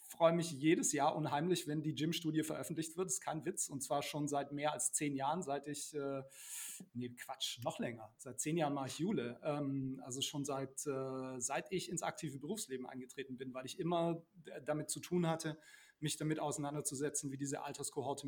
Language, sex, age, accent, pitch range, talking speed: German, male, 30-49, German, 135-165 Hz, 195 wpm